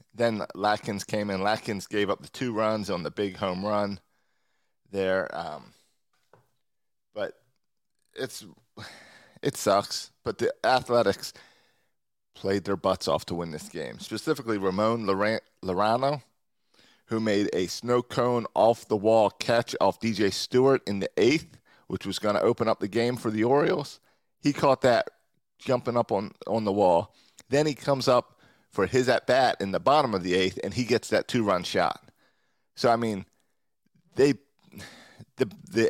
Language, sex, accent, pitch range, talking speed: English, male, American, 100-120 Hz, 160 wpm